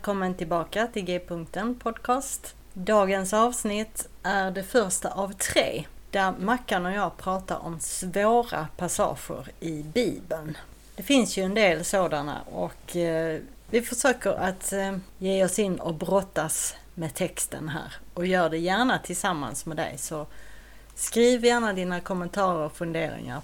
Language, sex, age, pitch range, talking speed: Swedish, female, 30-49, 165-200 Hz, 135 wpm